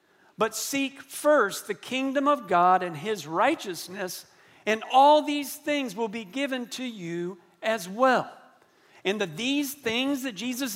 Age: 50-69